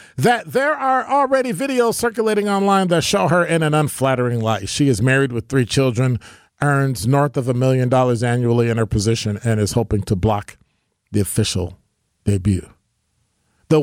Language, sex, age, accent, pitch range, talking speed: English, male, 40-59, American, 110-185 Hz, 170 wpm